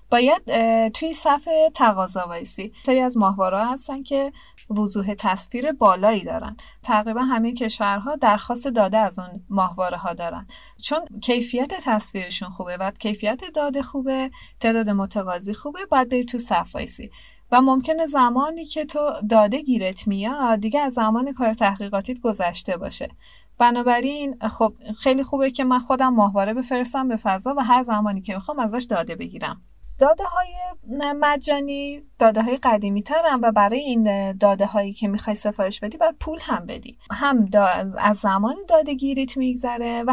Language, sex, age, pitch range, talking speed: Persian, female, 30-49, 210-275 Hz, 150 wpm